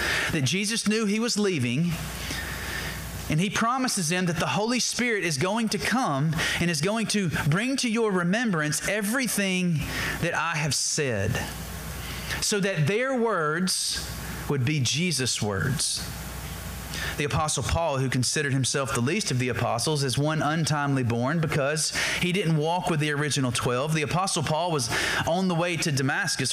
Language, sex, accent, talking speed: English, male, American, 160 wpm